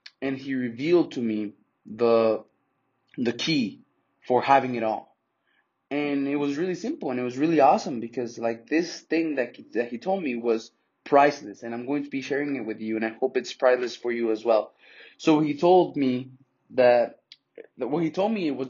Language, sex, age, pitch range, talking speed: English, male, 20-39, 115-140 Hz, 200 wpm